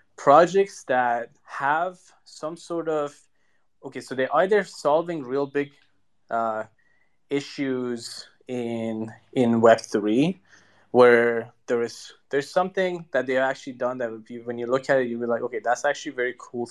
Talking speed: 160 wpm